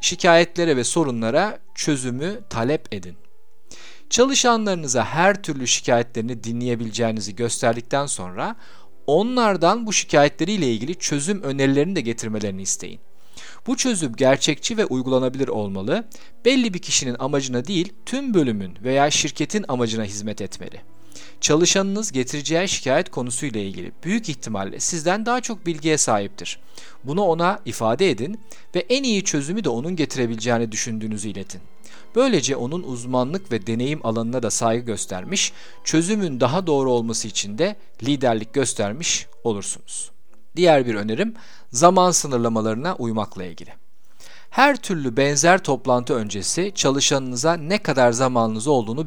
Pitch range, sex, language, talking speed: 115-180 Hz, male, Turkish, 120 wpm